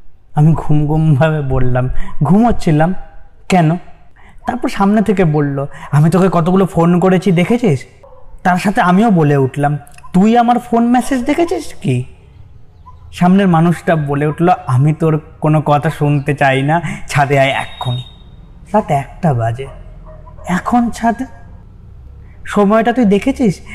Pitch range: 130-180 Hz